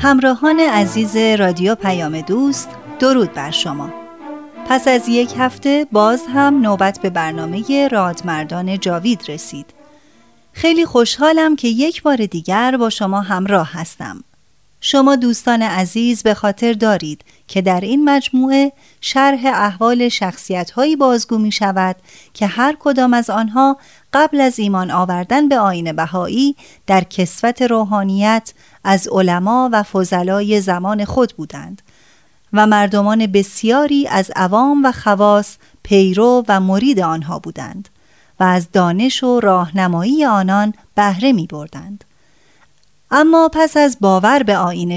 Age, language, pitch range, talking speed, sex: 30-49, Persian, 185-255 Hz, 125 wpm, female